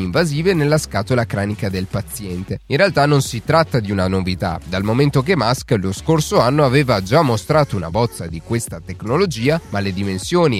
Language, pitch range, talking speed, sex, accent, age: Italian, 100-155 Hz, 180 wpm, male, native, 30-49